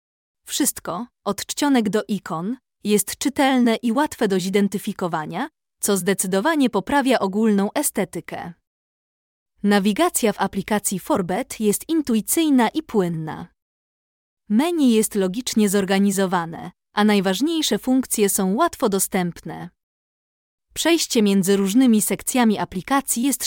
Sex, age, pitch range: female, 20-39, 195-250 Hz